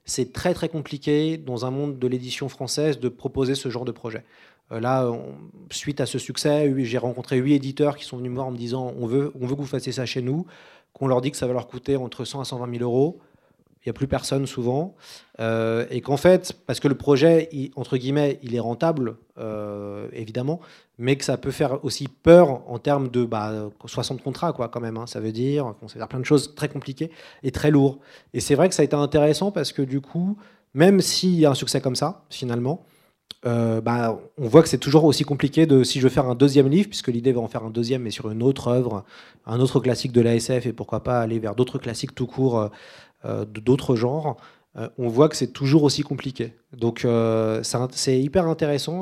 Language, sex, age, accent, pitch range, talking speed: French, male, 30-49, French, 120-145 Hz, 230 wpm